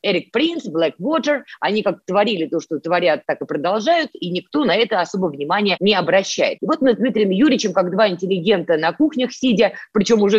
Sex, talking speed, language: female, 200 wpm, Russian